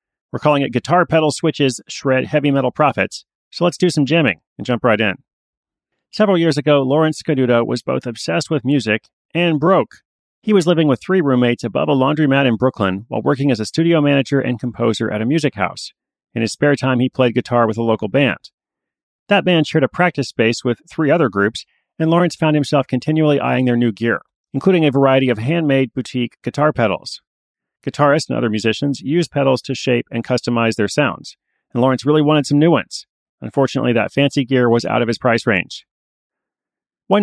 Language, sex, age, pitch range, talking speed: English, male, 40-59, 120-155 Hz, 195 wpm